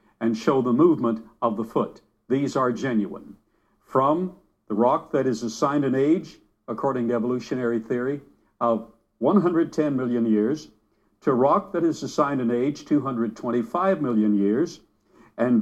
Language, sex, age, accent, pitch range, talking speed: English, male, 60-79, American, 115-165 Hz, 140 wpm